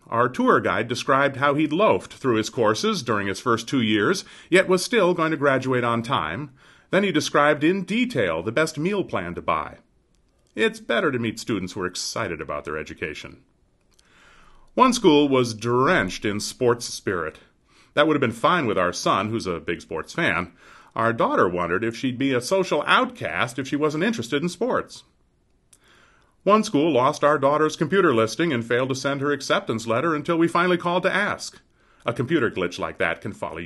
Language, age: English, 40-59